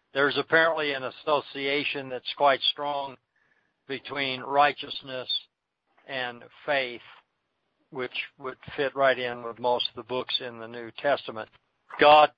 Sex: male